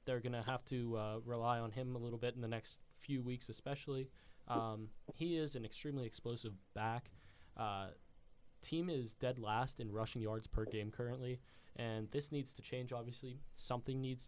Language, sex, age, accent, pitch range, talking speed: English, male, 20-39, American, 110-130 Hz, 185 wpm